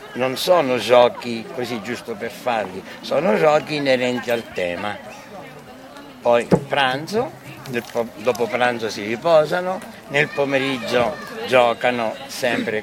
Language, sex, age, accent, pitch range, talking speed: Italian, male, 60-79, native, 115-150 Hz, 105 wpm